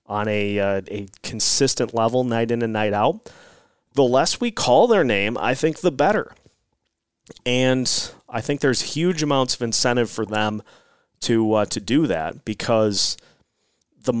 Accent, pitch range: American, 110-135 Hz